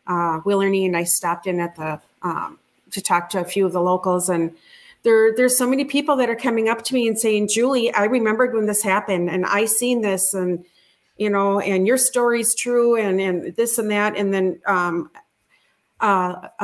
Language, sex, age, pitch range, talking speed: English, female, 40-59, 185-230 Hz, 205 wpm